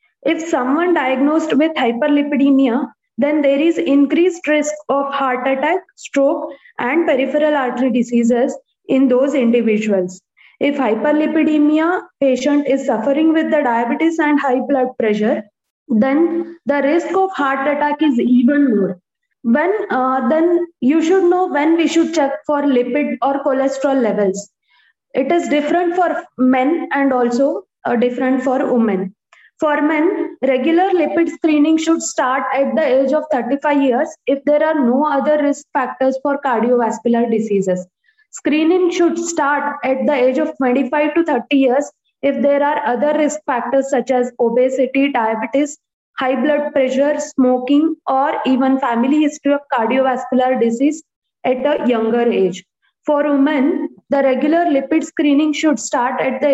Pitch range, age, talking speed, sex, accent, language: 260-305 Hz, 20-39, 145 wpm, female, Indian, English